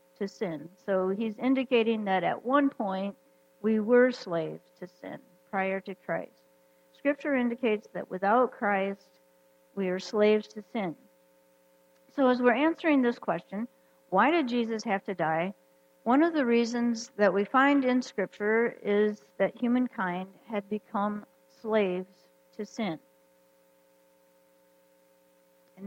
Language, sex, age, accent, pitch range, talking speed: English, female, 60-79, American, 160-230 Hz, 130 wpm